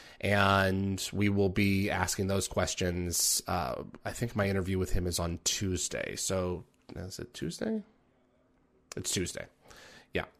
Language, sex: English, male